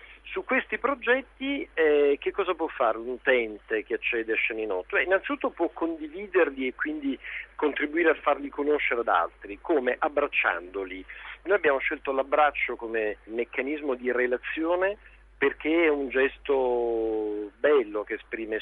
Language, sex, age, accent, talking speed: Italian, male, 50-69, native, 135 wpm